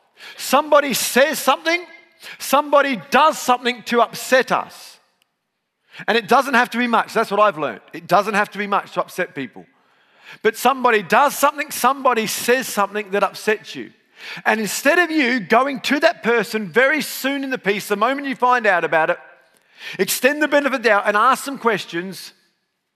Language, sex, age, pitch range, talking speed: English, male, 40-59, 210-270 Hz, 180 wpm